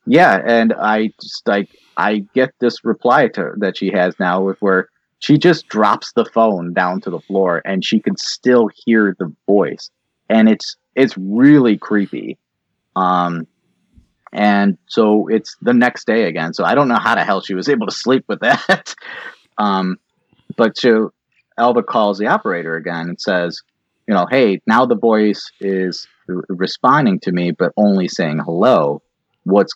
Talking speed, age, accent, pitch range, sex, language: 170 wpm, 30-49, American, 90-115 Hz, male, English